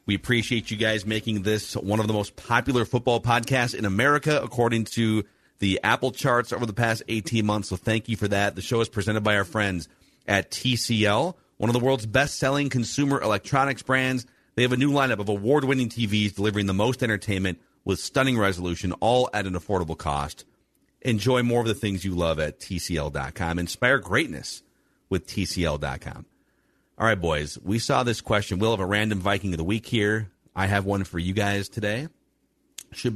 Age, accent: 40-59, American